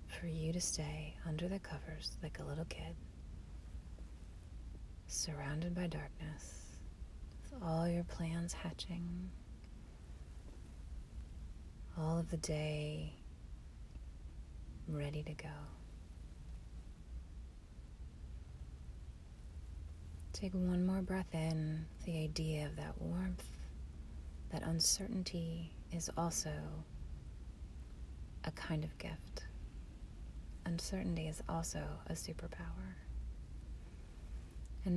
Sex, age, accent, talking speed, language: female, 30-49, American, 85 wpm, English